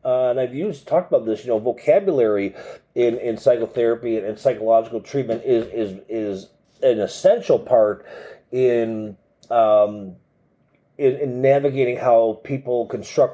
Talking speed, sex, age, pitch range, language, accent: 135 wpm, male, 40-59, 115-170 Hz, English, American